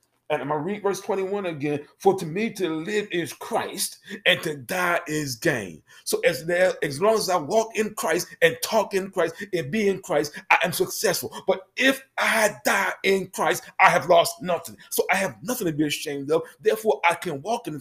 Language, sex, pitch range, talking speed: English, male, 145-190 Hz, 210 wpm